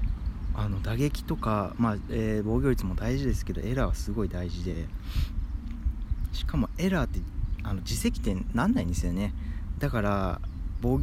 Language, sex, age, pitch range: Japanese, male, 20-39, 85-110 Hz